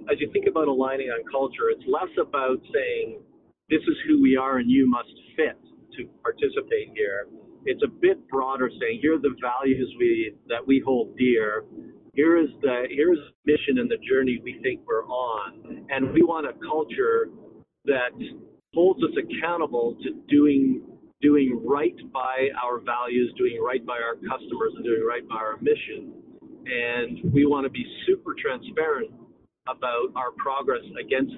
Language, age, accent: English, 50-69, American